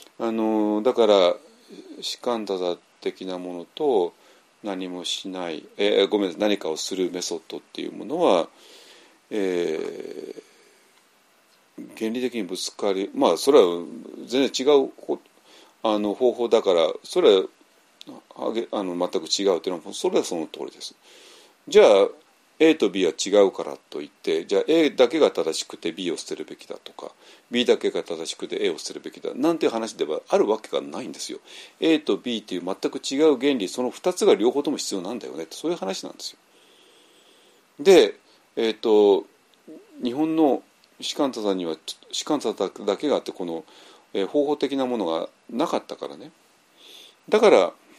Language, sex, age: Japanese, male, 40-59